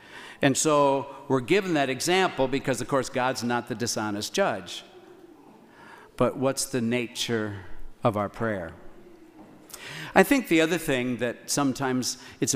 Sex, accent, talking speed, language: male, American, 140 wpm, English